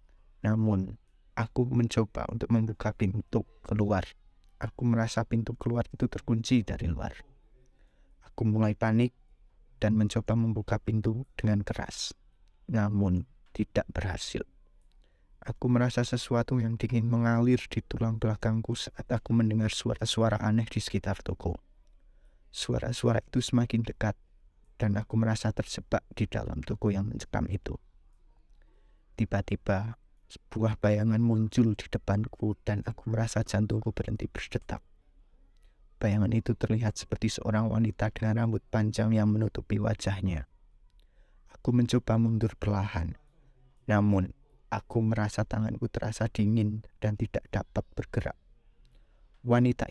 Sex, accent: male, native